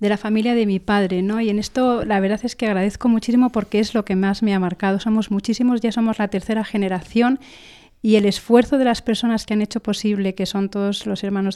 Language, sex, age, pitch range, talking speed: Spanish, female, 30-49, 200-235 Hz, 240 wpm